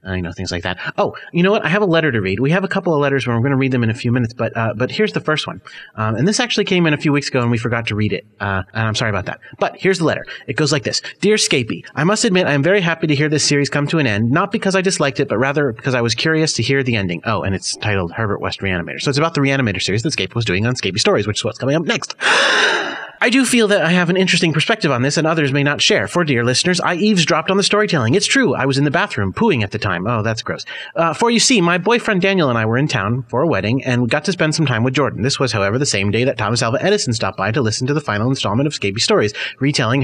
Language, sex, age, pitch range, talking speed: English, male, 30-49, 115-170 Hz, 315 wpm